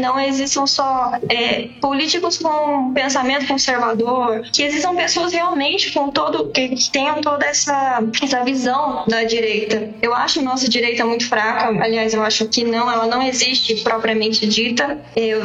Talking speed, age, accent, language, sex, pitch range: 155 wpm, 10-29, Brazilian, Portuguese, female, 240-285 Hz